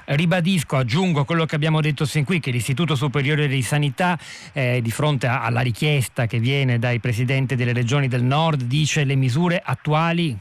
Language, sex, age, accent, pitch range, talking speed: Italian, male, 40-59, native, 125-155 Hz, 175 wpm